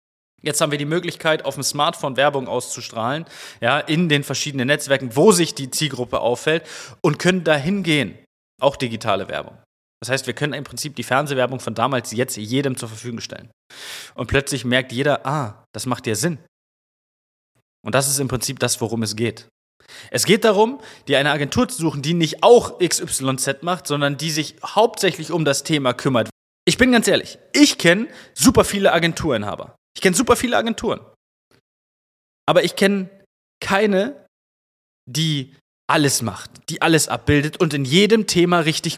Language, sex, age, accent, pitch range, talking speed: German, male, 20-39, German, 130-190 Hz, 170 wpm